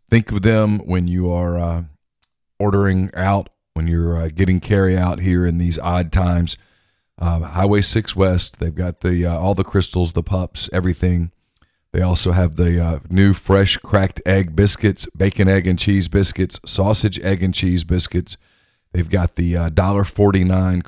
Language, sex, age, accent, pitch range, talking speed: English, male, 40-59, American, 85-95 Hz, 170 wpm